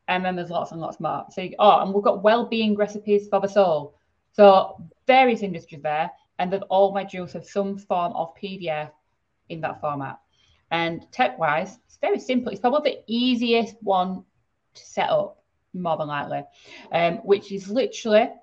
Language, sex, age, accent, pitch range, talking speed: English, female, 30-49, British, 160-210 Hz, 180 wpm